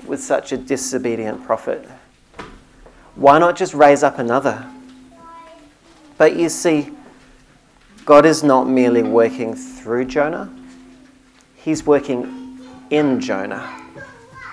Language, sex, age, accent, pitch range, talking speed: English, male, 40-59, Australian, 130-190 Hz, 105 wpm